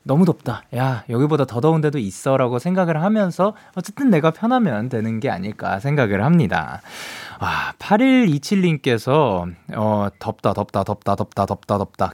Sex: male